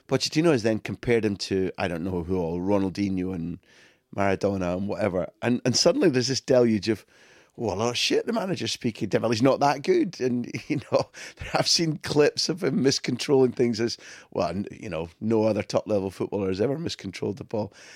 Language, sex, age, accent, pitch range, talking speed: English, male, 30-49, British, 105-145 Hz, 195 wpm